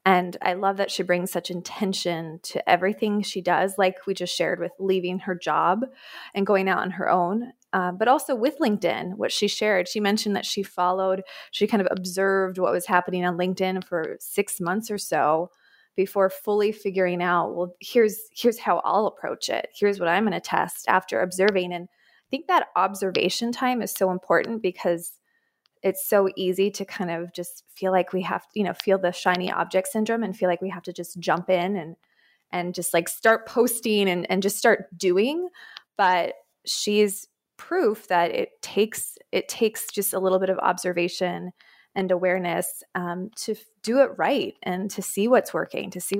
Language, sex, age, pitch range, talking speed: English, female, 20-39, 180-210 Hz, 195 wpm